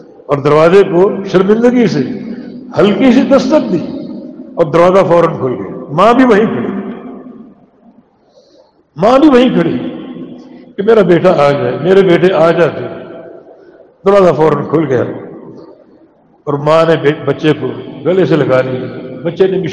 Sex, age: male, 60-79